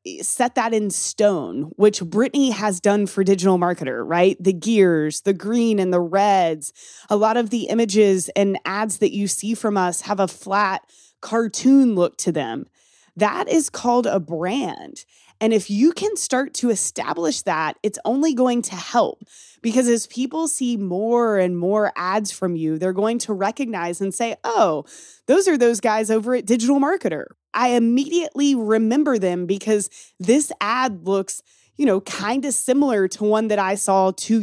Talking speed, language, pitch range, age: 175 wpm, English, 190-240 Hz, 20-39